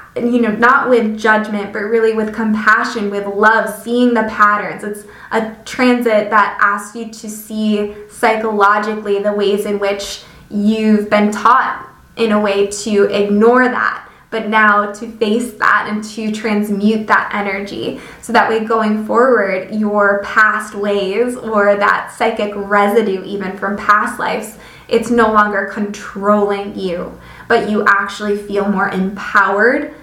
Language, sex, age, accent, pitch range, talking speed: English, female, 20-39, American, 210-240 Hz, 145 wpm